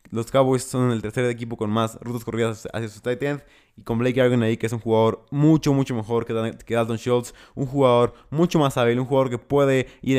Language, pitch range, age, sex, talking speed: Spanish, 110-130 Hz, 20-39, male, 240 wpm